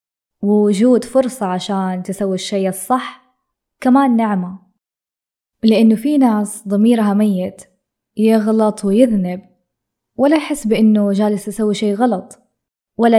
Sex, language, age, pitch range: female, Arabic, 20-39, 190-230 Hz